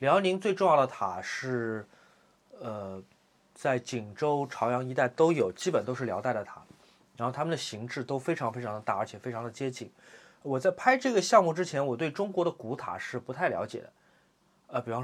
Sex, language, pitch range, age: male, Chinese, 115-150 Hz, 30-49